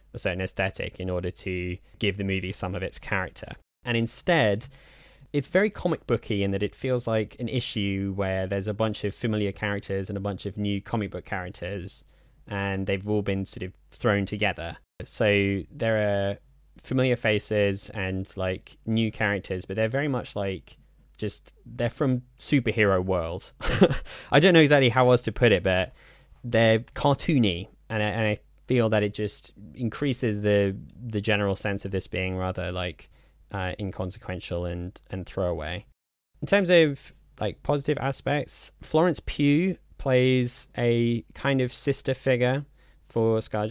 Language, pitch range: English, 100-125 Hz